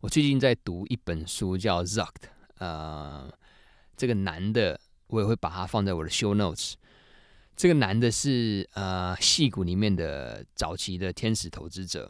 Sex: male